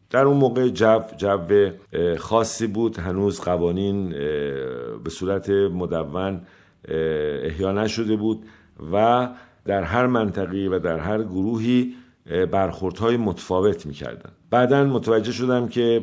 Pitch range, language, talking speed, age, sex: 90-110 Hz, Persian, 110 wpm, 50-69, male